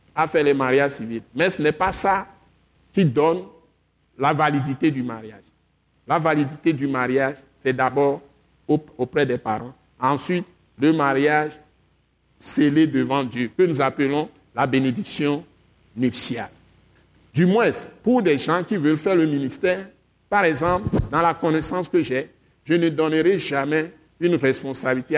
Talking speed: 140 wpm